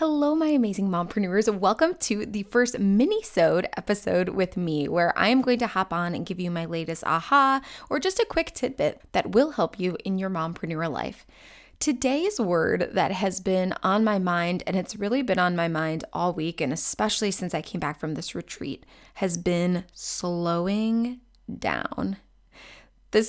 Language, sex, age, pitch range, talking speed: English, female, 20-39, 175-230 Hz, 175 wpm